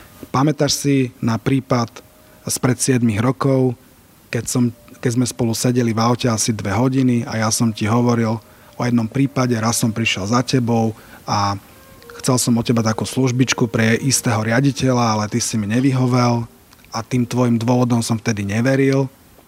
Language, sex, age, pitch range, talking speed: Slovak, male, 30-49, 105-125 Hz, 165 wpm